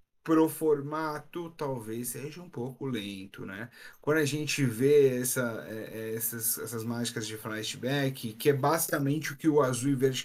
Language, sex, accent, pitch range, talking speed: Portuguese, male, Brazilian, 125-155 Hz, 150 wpm